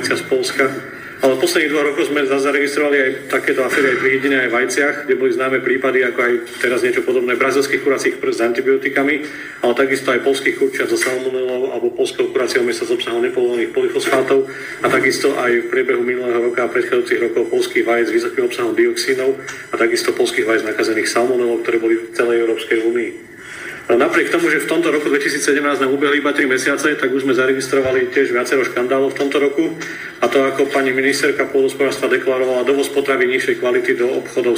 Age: 40-59